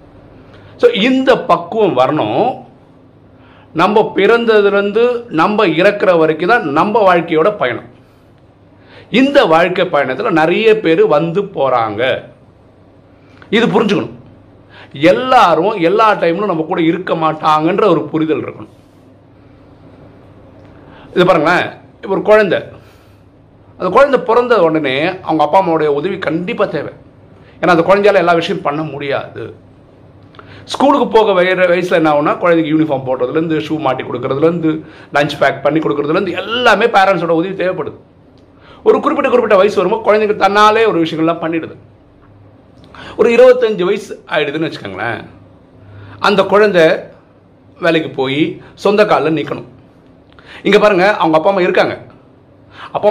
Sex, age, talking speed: male, 50-69, 80 wpm